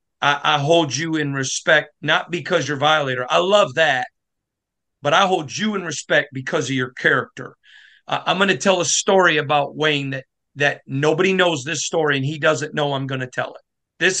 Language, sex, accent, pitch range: English, male, American, 140-180 Hz